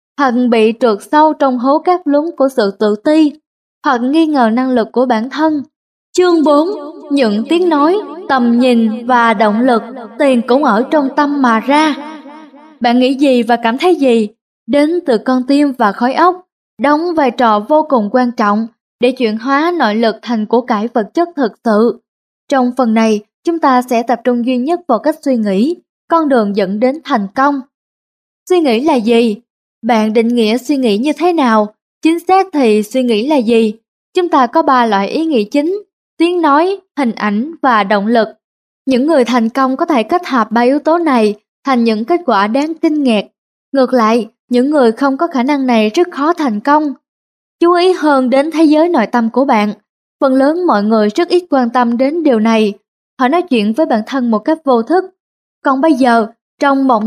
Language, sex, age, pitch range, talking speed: Vietnamese, female, 10-29, 230-300 Hz, 200 wpm